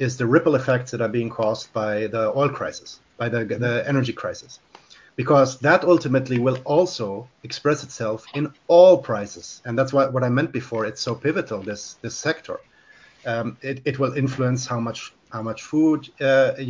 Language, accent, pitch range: English, German, 110-135 Hz